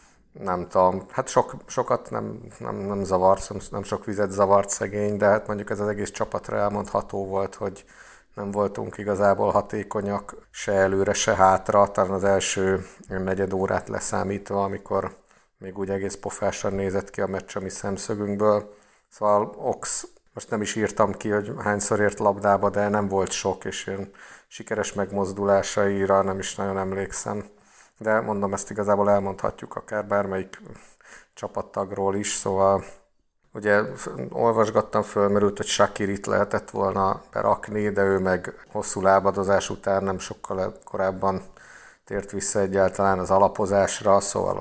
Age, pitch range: 50-69, 95-105 Hz